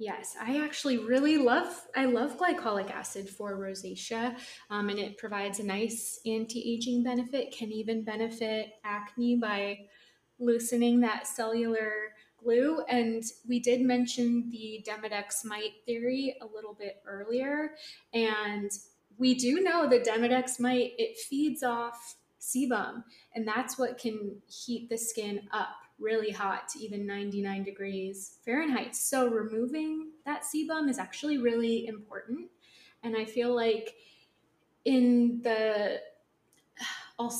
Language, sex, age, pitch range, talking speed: English, female, 20-39, 210-250 Hz, 130 wpm